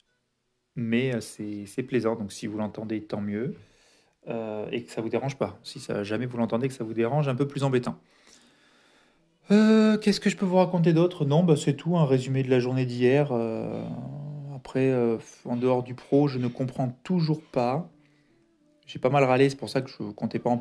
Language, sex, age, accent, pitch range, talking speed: French, male, 30-49, French, 115-140 Hz, 215 wpm